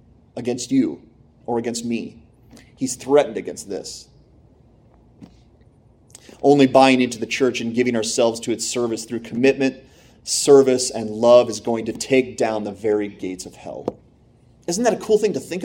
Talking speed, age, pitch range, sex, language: 160 wpm, 30-49, 120-170 Hz, male, English